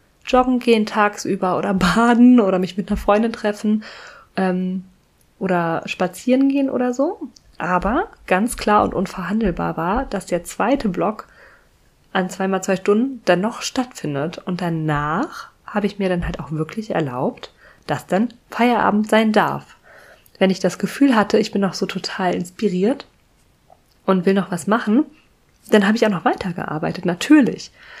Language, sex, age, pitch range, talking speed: German, female, 20-39, 185-235 Hz, 155 wpm